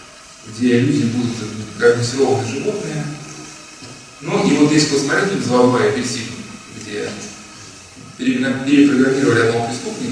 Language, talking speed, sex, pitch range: Russian, 100 wpm, male, 125-180 Hz